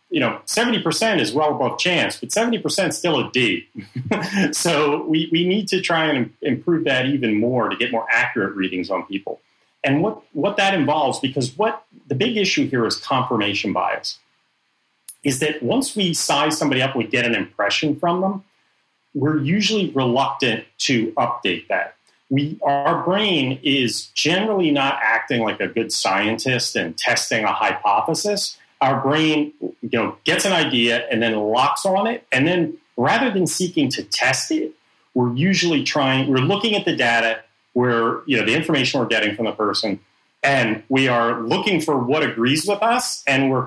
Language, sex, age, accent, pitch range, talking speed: English, male, 40-59, American, 120-180 Hz, 175 wpm